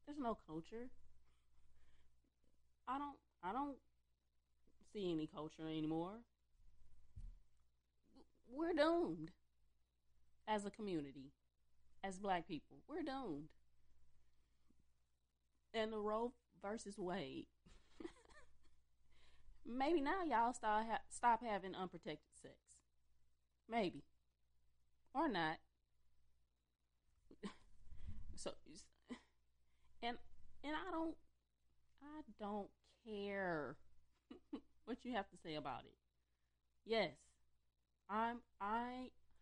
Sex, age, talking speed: female, 20-39, 85 wpm